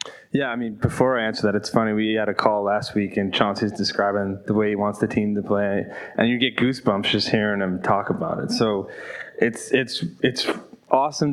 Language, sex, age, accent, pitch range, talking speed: English, male, 20-39, American, 105-115 Hz, 215 wpm